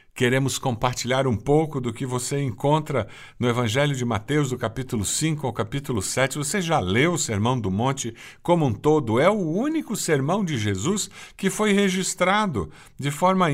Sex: male